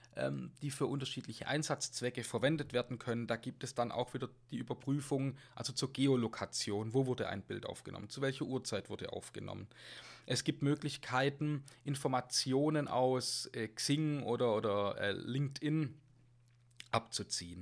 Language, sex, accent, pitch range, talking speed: German, male, German, 115-150 Hz, 135 wpm